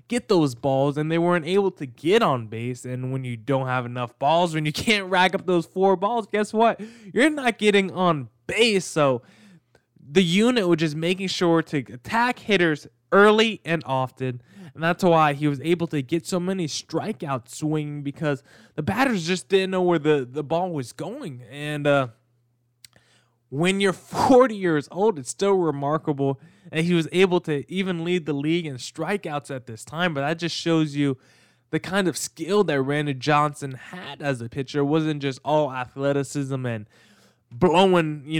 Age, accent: 20-39, American